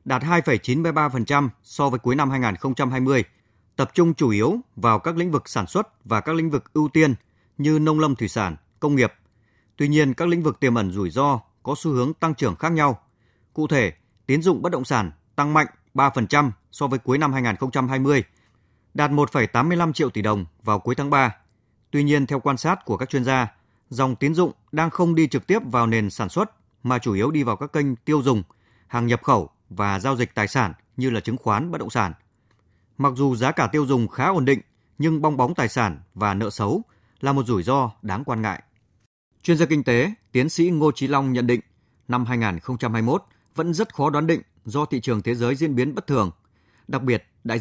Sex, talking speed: male, 215 wpm